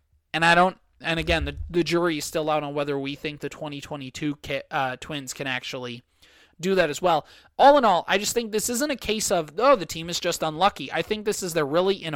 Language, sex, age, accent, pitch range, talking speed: English, male, 20-39, American, 140-190 Hz, 245 wpm